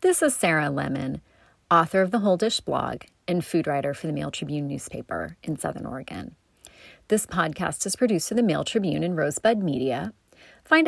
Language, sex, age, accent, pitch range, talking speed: English, female, 30-49, American, 155-205 Hz, 180 wpm